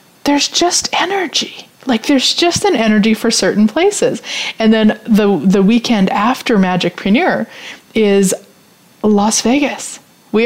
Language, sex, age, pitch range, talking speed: English, female, 30-49, 200-270 Hz, 130 wpm